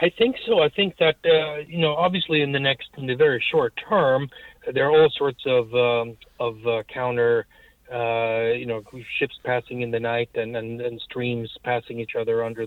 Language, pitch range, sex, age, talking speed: English, 120-150 Hz, male, 30-49, 205 wpm